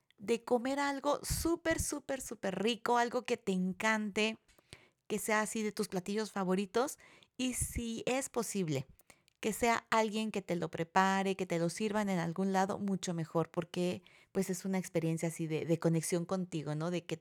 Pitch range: 175-230 Hz